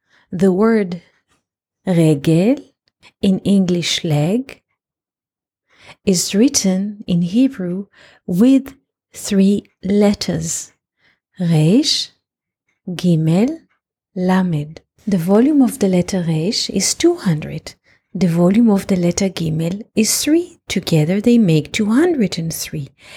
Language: English